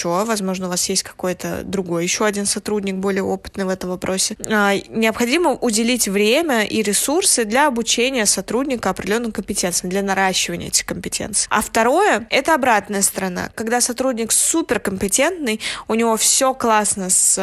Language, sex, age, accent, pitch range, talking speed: Russian, female, 20-39, native, 195-230 Hz, 145 wpm